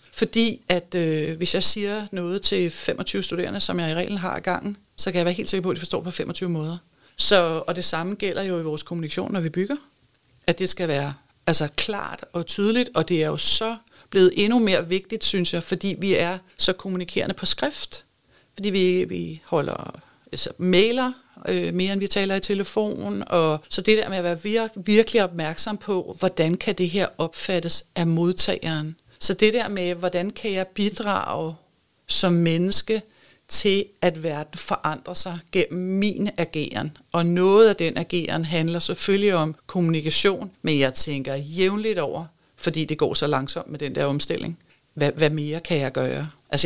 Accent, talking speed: Danish, 185 wpm